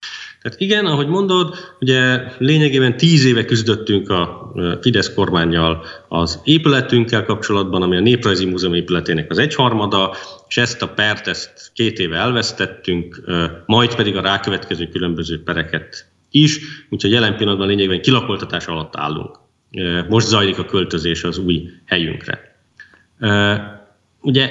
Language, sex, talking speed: Hungarian, male, 125 wpm